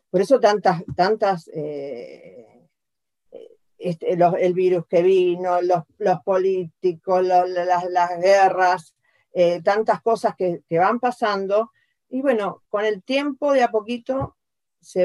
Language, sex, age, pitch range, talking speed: Spanish, female, 40-59, 175-225 Hz, 135 wpm